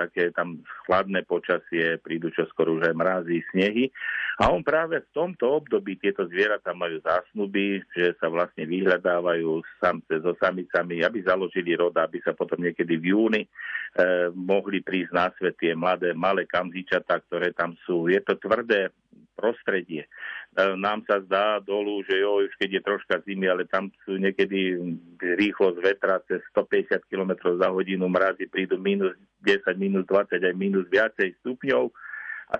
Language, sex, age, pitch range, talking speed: Slovak, male, 50-69, 90-105 Hz, 155 wpm